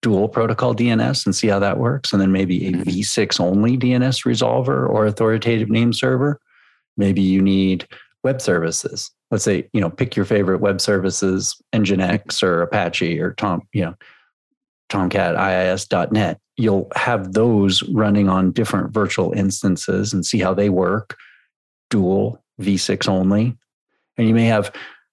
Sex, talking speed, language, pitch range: male, 150 wpm, English, 100-120 Hz